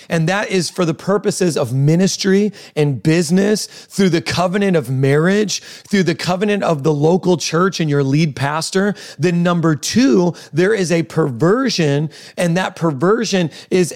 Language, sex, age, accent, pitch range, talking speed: English, male, 30-49, American, 155-195 Hz, 160 wpm